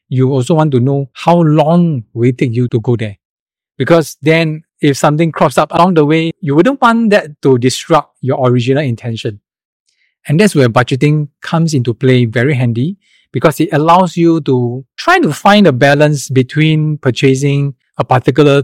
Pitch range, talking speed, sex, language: 130-165 Hz, 175 wpm, male, English